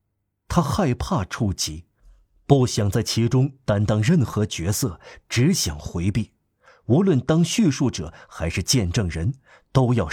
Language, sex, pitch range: Chinese, male, 95-125 Hz